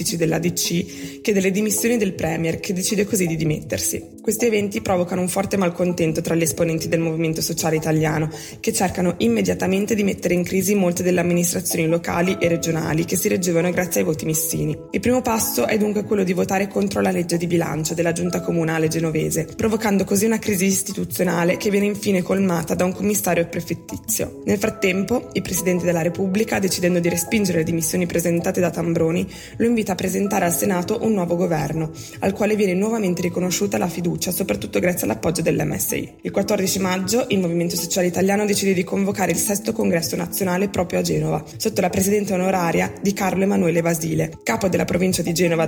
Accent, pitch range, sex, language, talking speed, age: native, 170-200 Hz, female, Italian, 180 wpm, 20-39